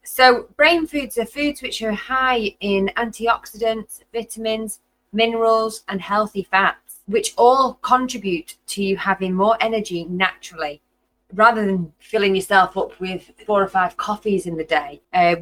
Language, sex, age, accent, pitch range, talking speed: English, female, 20-39, British, 175-225 Hz, 150 wpm